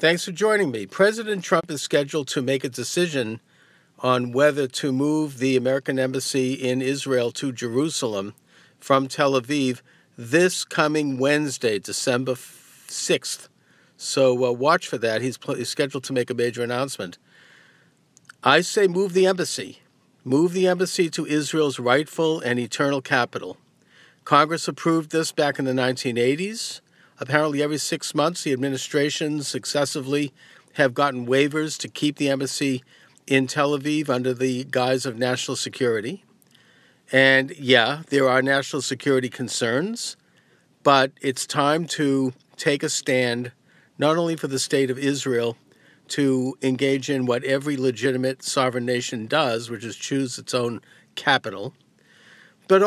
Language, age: English, 50-69